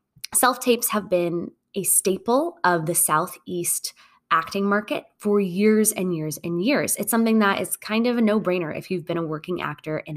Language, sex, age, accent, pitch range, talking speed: English, female, 20-39, American, 170-215 Hz, 185 wpm